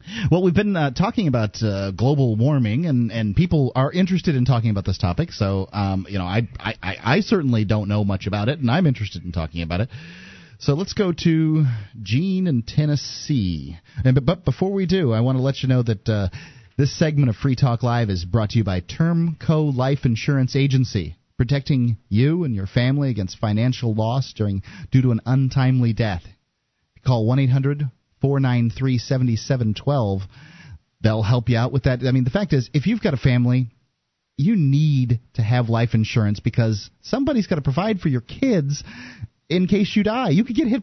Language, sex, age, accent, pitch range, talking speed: English, male, 30-49, American, 115-165 Hz, 200 wpm